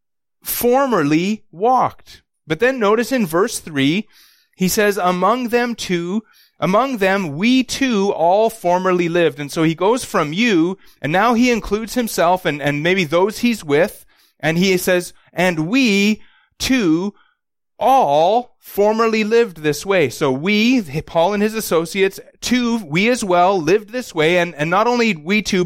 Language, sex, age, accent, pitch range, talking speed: English, male, 30-49, American, 165-220 Hz, 155 wpm